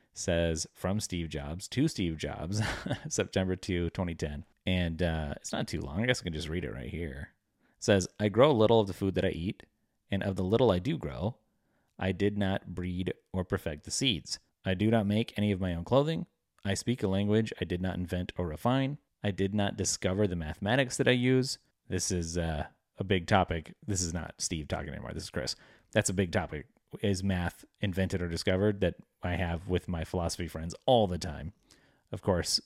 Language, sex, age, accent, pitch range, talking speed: English, male, 30-49, American, 85-105 Hz, 210 wpm